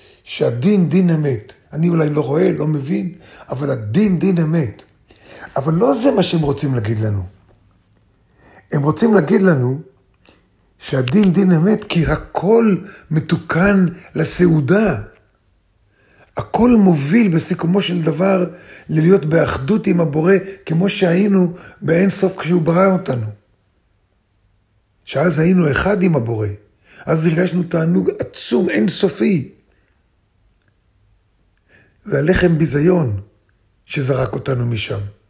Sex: male